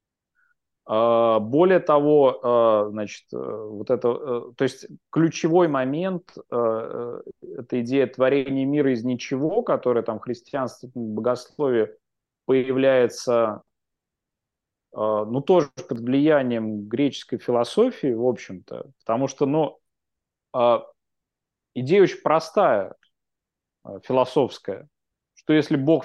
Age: 30-49